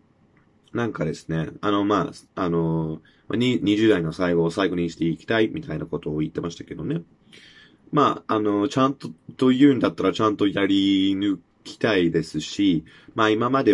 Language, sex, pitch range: Japanese, male, 85-140 Hz